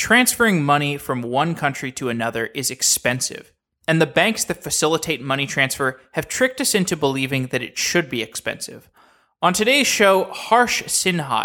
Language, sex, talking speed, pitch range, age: English, male, 160 wpm, 135-180 Hz, 20-39